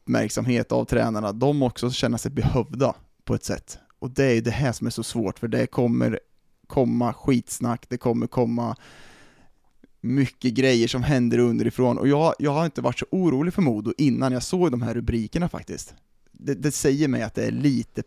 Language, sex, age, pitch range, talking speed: Swedish, male, 20-39, 115-140 Hz, 195 wpm